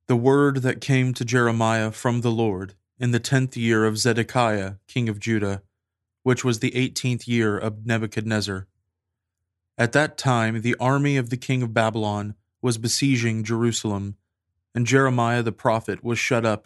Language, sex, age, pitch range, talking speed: English, male, 20-39, 105-125 Hz, 160 wpm